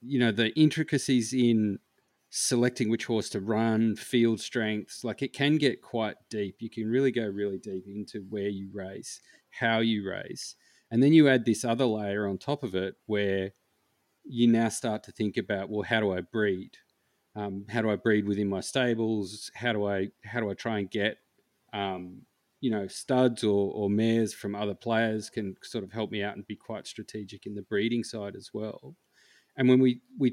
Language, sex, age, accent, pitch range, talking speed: English, male, 30-49, Australian, 100-115 Hz, 200 wpm